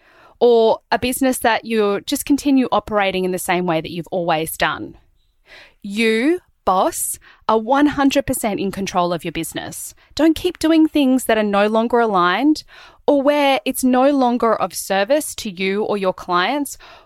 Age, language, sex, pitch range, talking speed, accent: 20-39, English, female, 185-260 Hz, 160 wpm, Australian